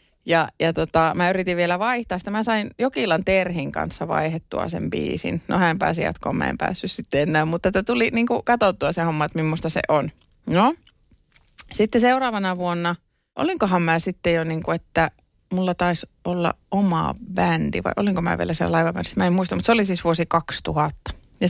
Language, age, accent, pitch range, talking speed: Finnish, 30-49, native, 165-200 Hz, 190 wpm